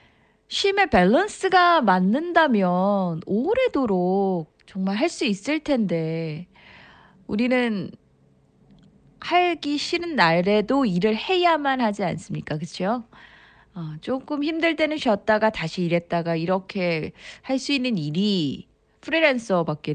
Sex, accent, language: female, native, Korean